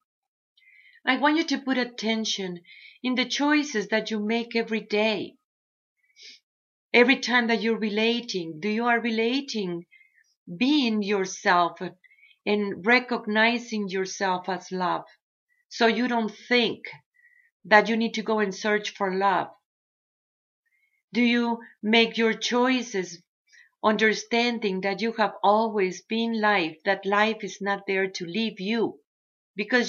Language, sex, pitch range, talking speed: English, female, 200-250 Hz, 130 wpm